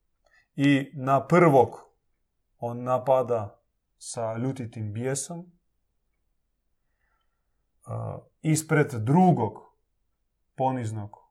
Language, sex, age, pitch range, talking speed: Croatian, male, 30-49, 110-135 Hz, 60 wpm